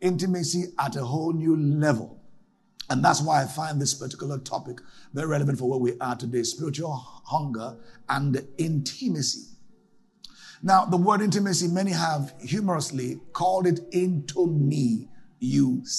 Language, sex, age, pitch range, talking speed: English, male, 50-69, 135-195 Hz, 140 wpm